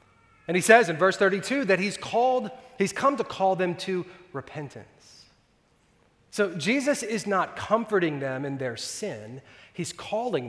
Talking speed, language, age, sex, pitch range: 155 wpm, English, 30-49, male, 130-190 Hz